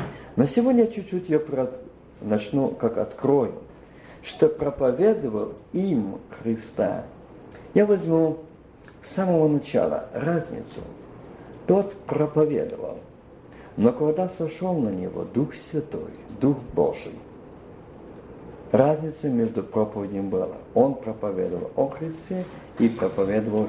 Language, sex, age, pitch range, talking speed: Russian, male, 50-69, 155-245 Hz, 95 wpm